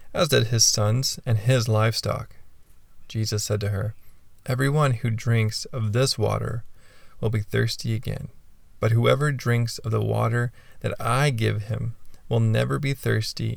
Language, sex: English, male